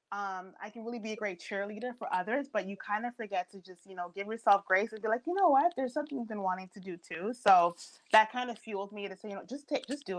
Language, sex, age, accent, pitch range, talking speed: English, female, 30-49, American, 180-225 Hz, 295 wpm